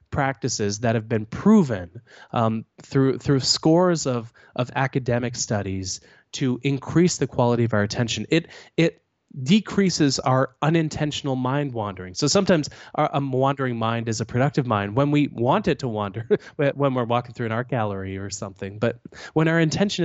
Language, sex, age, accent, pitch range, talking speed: English, male, 20-39, American, 120-160 Hz, 165 wpm